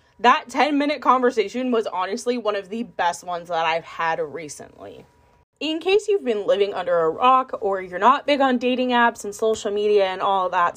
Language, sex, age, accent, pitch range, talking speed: English, female, 20-39, American, 180-250 Hz, 195 wpm